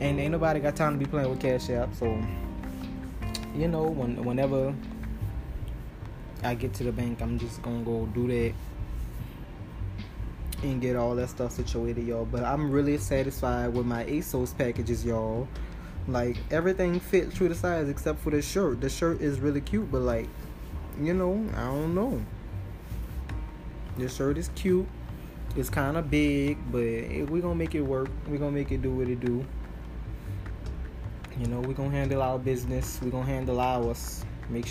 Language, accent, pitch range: English, American, 115-145 Hz